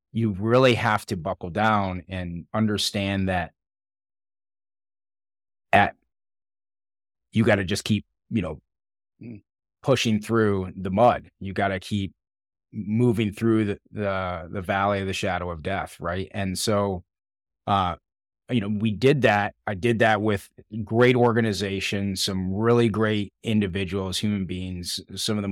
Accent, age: American, 30-49